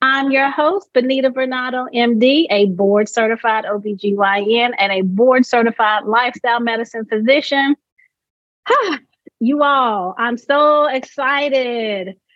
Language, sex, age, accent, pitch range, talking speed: English, female, 30-49, American, 205-270 Hz, 95 wpm